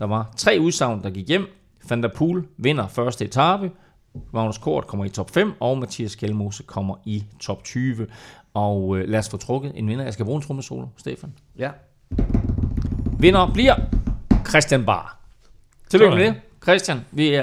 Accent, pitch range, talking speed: native, 105-135 Hz, 170 wpm